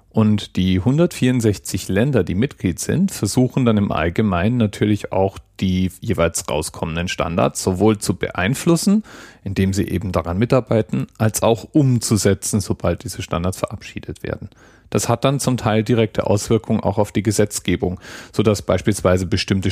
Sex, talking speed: male, 145 wpm